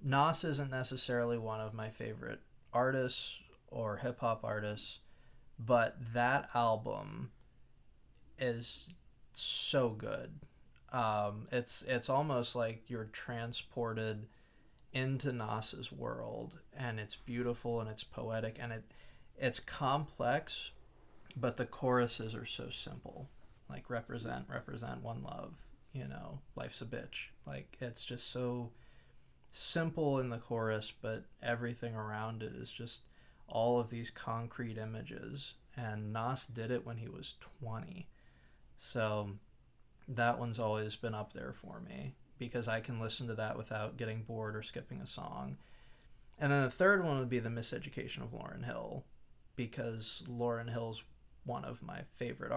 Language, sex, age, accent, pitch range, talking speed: English, male, 20-39, American, 110-125 Hz, 140 wpm